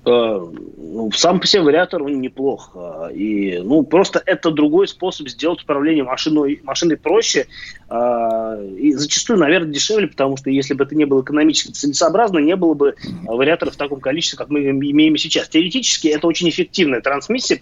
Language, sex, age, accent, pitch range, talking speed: Russian, male, 20-39, native, 135-175 Hz, 170 wpm